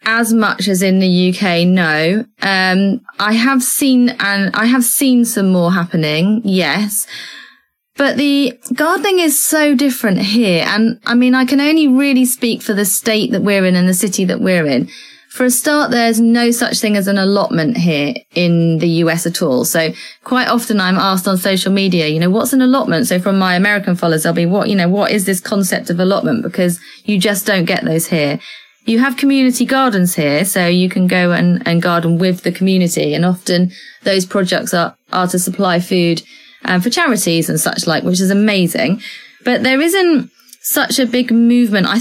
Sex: female